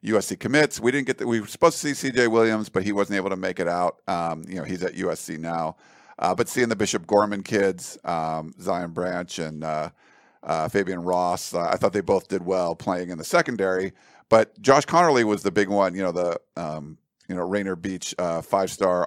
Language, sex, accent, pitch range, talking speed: English, male, American, 90-110 Hz, 225 wpm